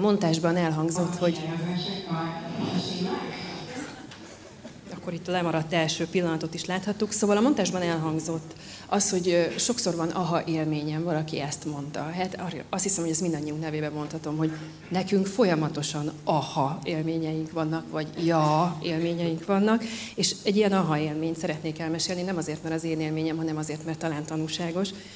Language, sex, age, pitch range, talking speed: Hungarian, female, 40-59, 155-180 Hz, 145 wpm